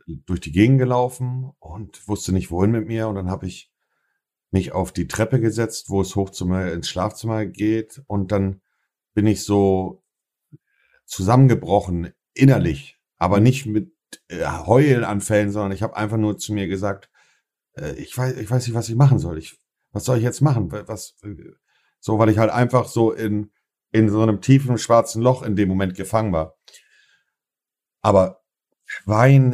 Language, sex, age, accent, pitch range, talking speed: German, male, 50-69, German, 95-120 Hz, 165 wpm